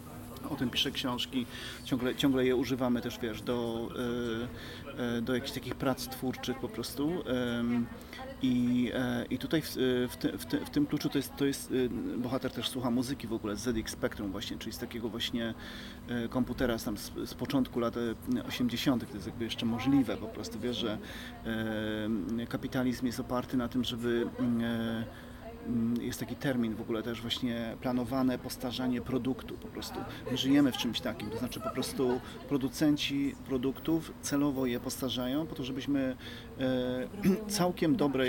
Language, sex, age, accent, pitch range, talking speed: Polish, male, 30-49, native, 115-130 Hz, 170 wpm